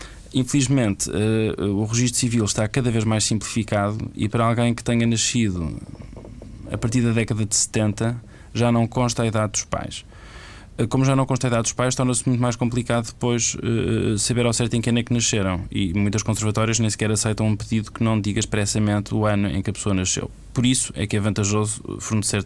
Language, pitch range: Portuguese, 105-125 Hz